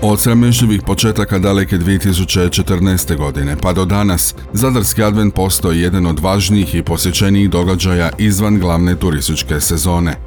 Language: Croatian